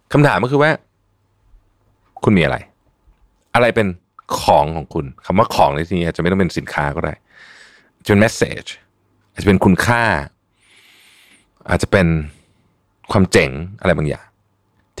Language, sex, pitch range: Thai, male, 80-110 Hz